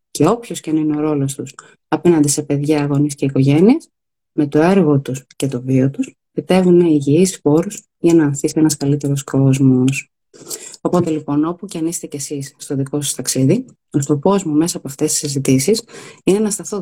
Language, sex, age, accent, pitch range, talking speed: Greek, female, 30-49, native, 145-195 Hz, 185 wpm